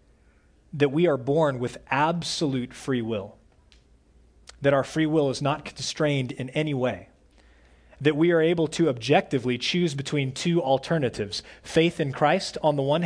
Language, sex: English, male